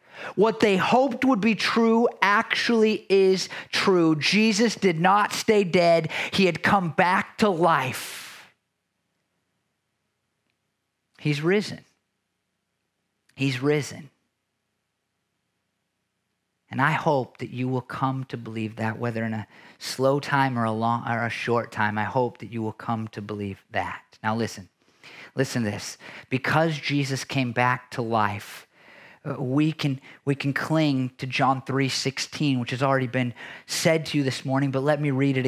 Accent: American